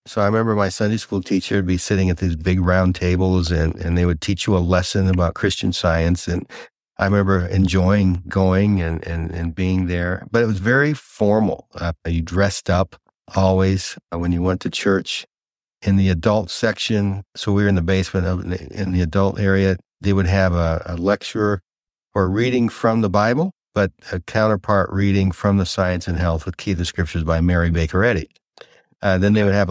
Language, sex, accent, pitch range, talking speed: English, male, American, 85-100 Hz, 200 wpm